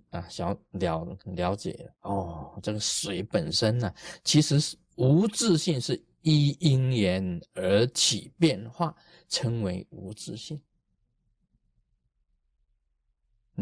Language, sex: Chinese, male